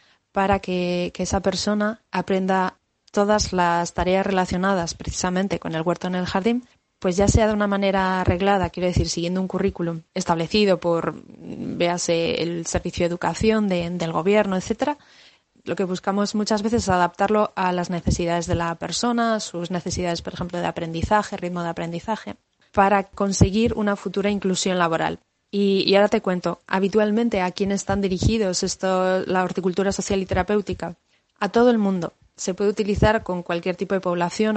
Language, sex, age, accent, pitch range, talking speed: Spanish, female, 20-39, Spanish, 175-200 Hz, 165 wpm